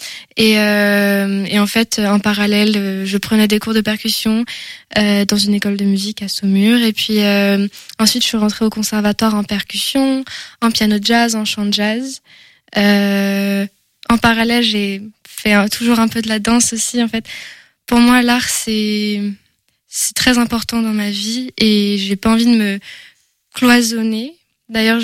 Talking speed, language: 175 wpm, French